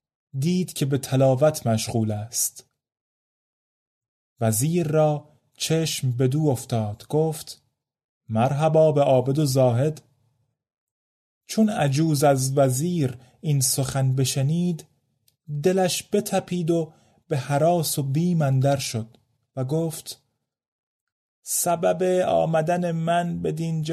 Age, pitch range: 30-49, 130-160 Hz